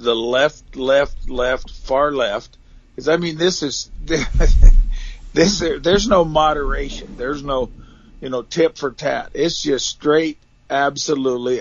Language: English